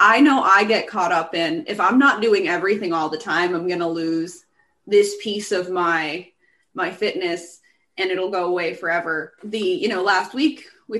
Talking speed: 195 wpm